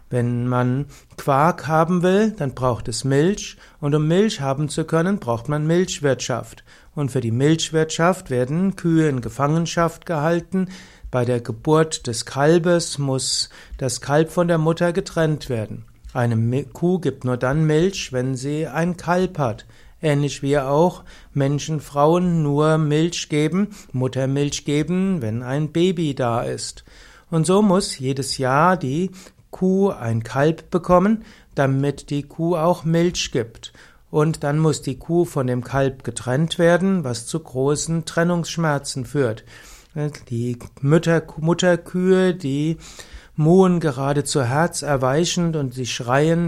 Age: 60-79